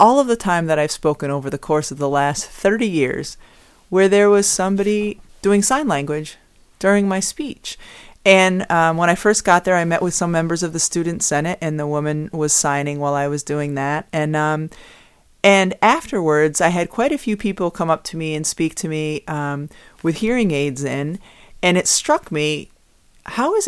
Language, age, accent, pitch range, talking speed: English, 30-49, American, 150-190 Hz, 205 wpm